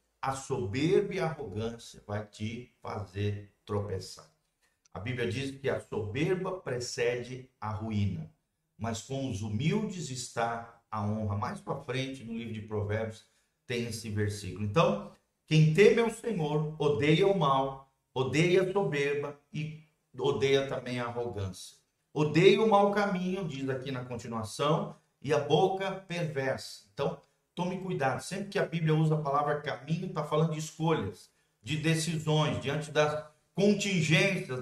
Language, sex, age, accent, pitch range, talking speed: Portuguese, male, 50-69, Brazilian, 120-165 Hz, 145 wpm